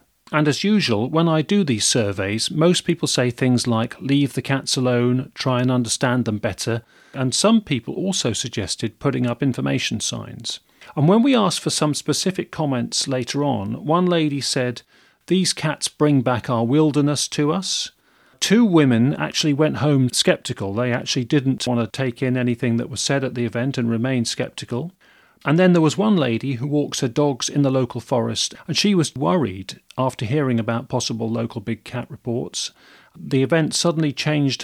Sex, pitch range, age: male, 120-150 Hz, 40-59